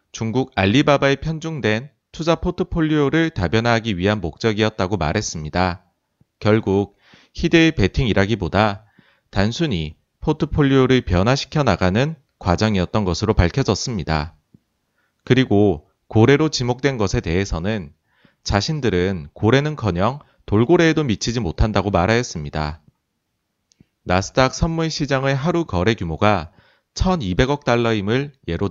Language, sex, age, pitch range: Korean, male, 30-49, 95-135 Hz